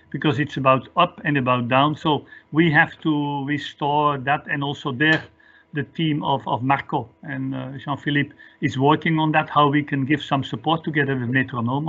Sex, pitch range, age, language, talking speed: male, 140-160 Hz, 50-69, English, 185 wpm